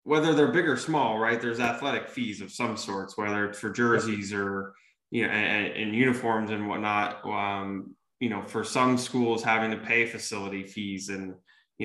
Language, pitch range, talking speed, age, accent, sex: English, 105-125 Hz, 185 wpm, 20-39, American, male